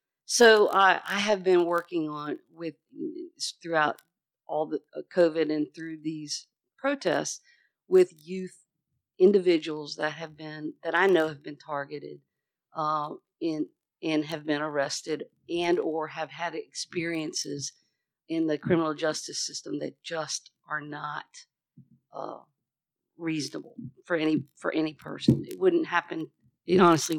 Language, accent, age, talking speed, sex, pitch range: English, American, 50-69, 130 wpm, female, 150-180 Hz